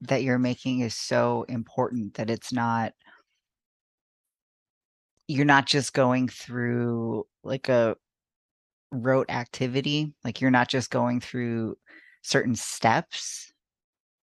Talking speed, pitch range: 110 wpm, 115-135 Hz